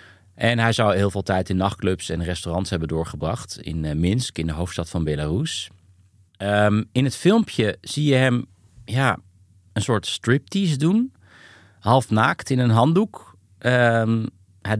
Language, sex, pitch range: Dutch, male, 95-120 Hz